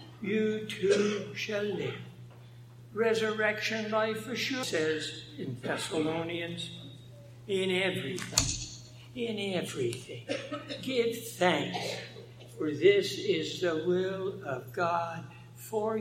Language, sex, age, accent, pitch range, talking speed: English, male, 60-79, American, 125-195 Hz, 95 wpm